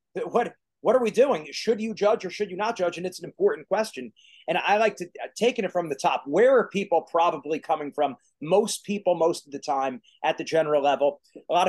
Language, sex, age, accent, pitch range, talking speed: English, male, 30-49, American, 170-220 Hz, 230 wpm